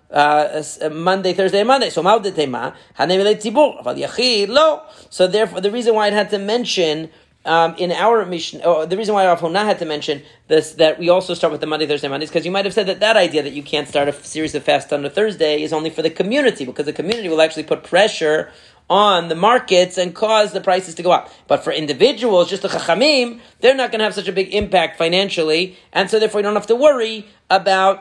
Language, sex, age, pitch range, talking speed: English, male, 40-59, 150-200 Hz, 230 wpm